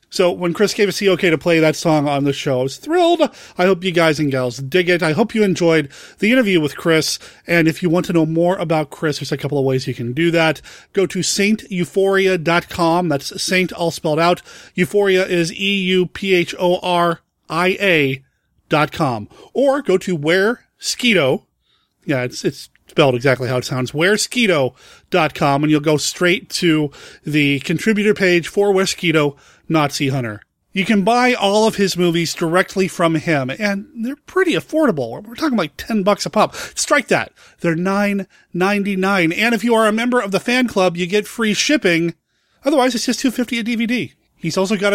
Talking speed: 185 wpm